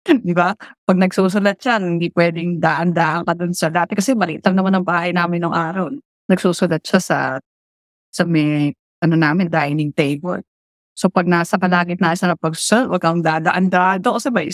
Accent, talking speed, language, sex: native, 185 wpm, Filipino, female